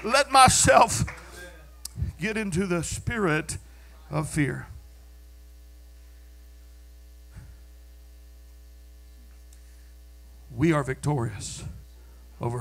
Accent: American